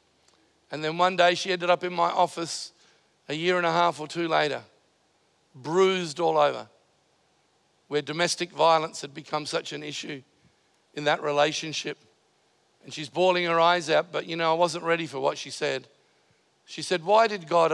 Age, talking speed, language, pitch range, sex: 50-69, 180 wpm, English, 170-235 Hz, male